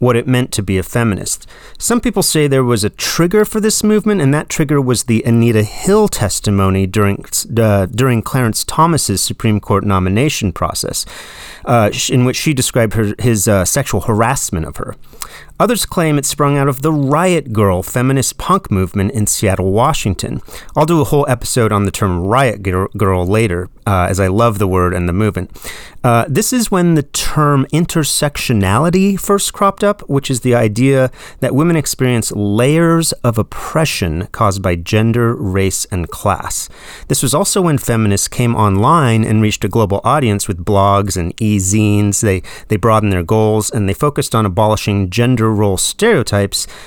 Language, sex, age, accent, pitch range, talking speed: English, male, 30-49, American, 100-145 Hz, 175 wpm